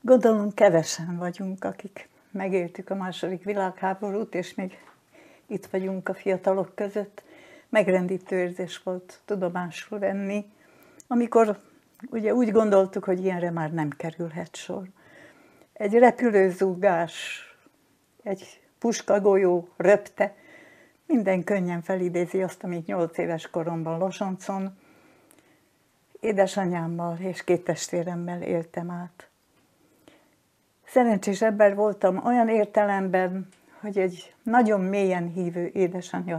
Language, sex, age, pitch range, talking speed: Hungarian, female, 60-79, 180-215 Hz, 100 wpm